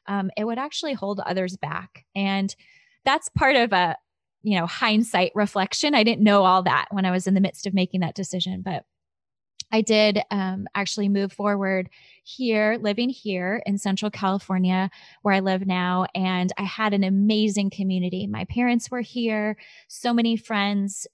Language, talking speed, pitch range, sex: English, 175 wpm, 190-225 Hz, female